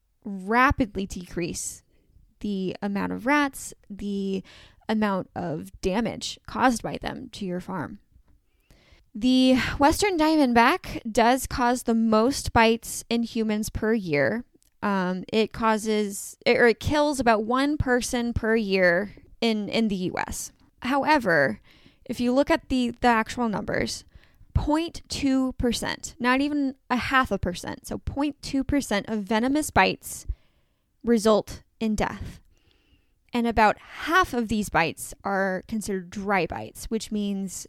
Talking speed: 125 wpm